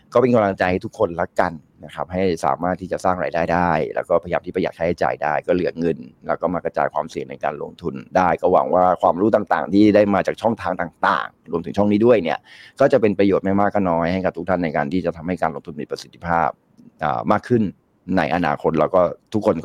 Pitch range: 85-100 Hz